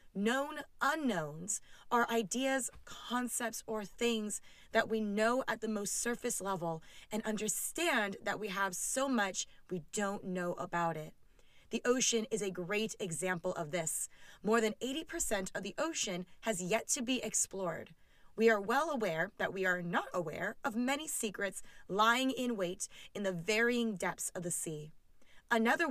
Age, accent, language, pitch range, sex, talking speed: 20-39, American, English, 185-240 Hz, female, 160 wpm